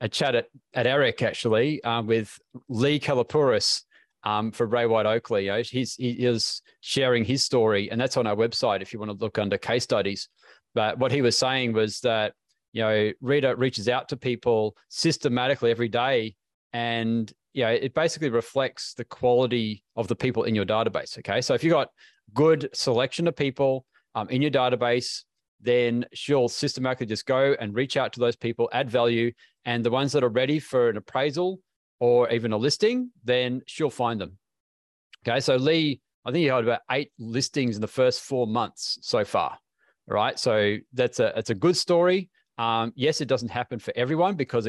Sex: male